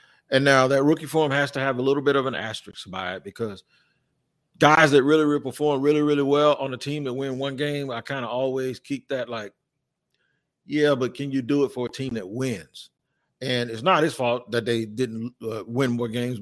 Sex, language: male, English